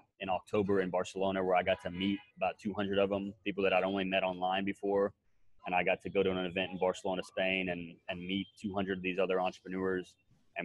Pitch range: 90-100 Hz